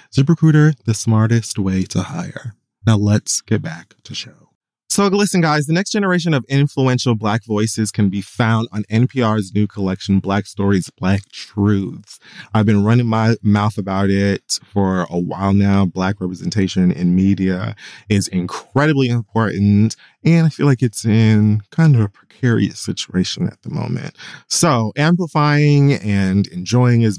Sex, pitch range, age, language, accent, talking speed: male, 95-130 Hz, 20-39, English, American, 155 wpm